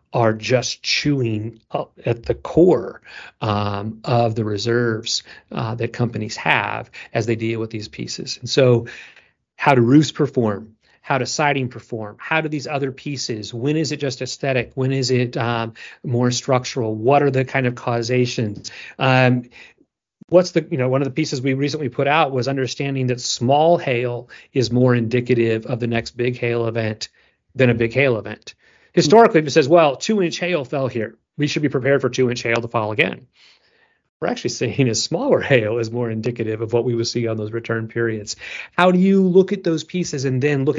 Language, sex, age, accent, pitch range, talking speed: English, male, 40-59, American, 115-145 Hz, 195 wpm